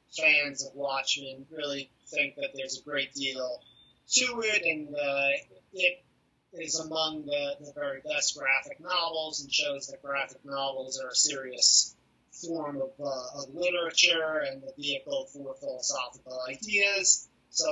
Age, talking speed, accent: 30-49, 145 wpm, American